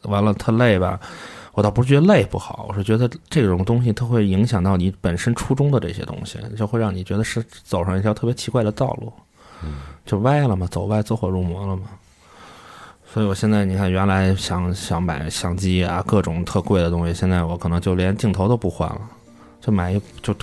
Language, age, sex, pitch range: Chinese, 20-39, male, 85-105 Hz